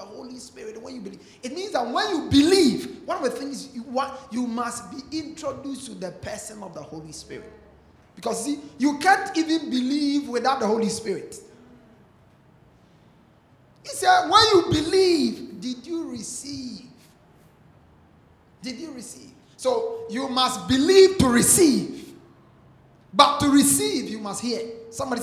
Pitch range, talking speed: 190-285 Hz, 150 wpm